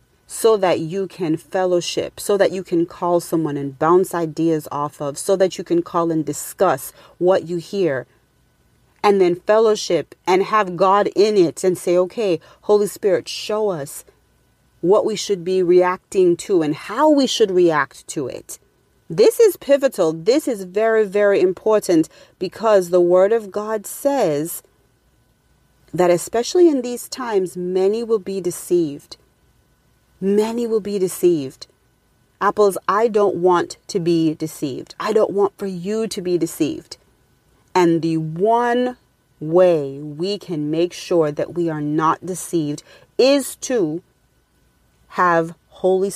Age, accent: 40-59, American